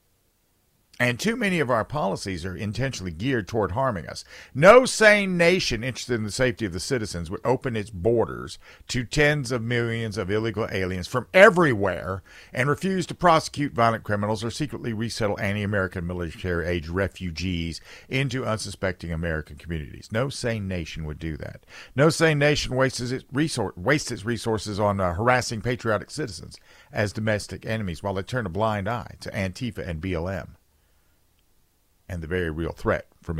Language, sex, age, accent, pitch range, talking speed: English, male, 50-69, American, 95-130 Hz, 155 wpm